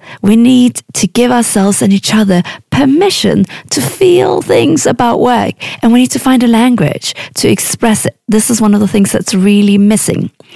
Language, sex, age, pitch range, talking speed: English, female, 30-49, 180-235 Hz, 190 wpm